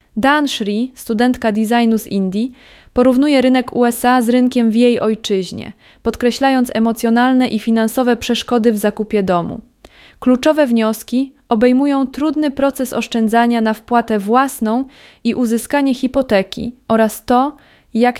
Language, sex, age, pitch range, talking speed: English, female, 20-39, 220-255 Hz, 120 wpm